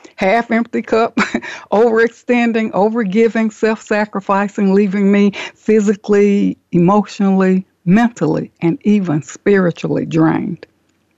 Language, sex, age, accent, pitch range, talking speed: English, female, 60-79, American, 190-245 Hz, 75 wpm